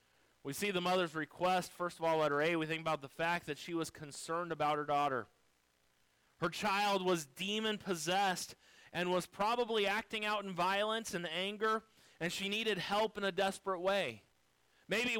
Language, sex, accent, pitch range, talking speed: English, male, American, 180-230 Hz, 180 wpm